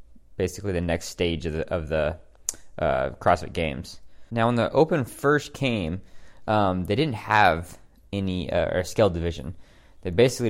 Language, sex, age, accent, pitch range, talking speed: English, male, 20-39, American, 90-110 Hz, 155 wpm